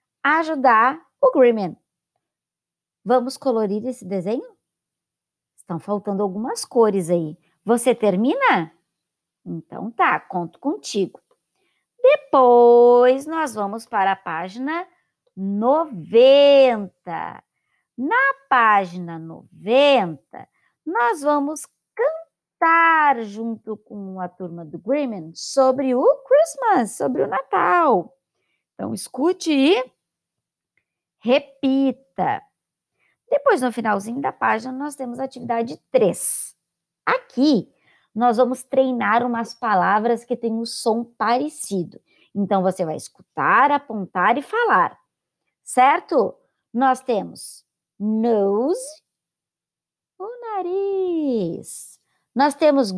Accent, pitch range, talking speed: Brazilian, 205-285 Hz, 95 wpm